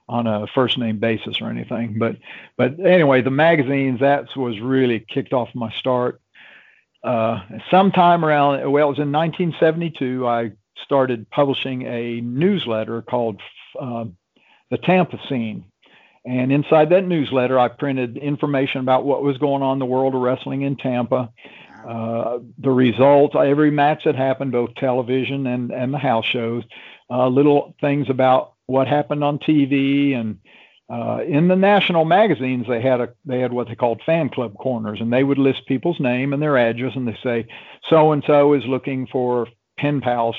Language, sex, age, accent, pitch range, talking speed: English, male, 60-79, American, 120-145 Hz, 170 wpm